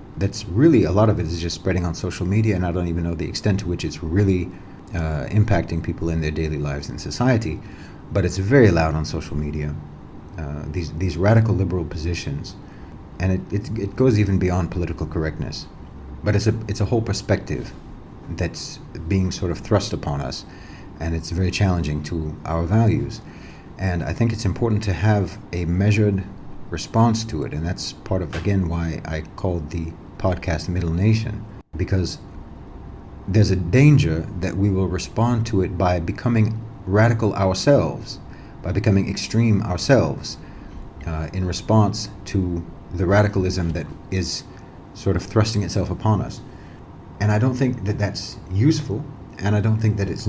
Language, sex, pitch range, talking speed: English, male, 85-105 Hz, 170 wpm